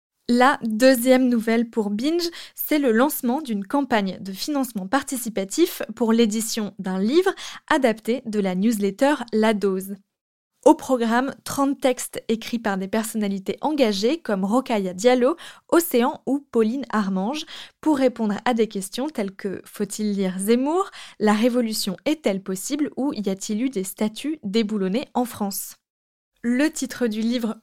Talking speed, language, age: 145 wpm, French, 20-39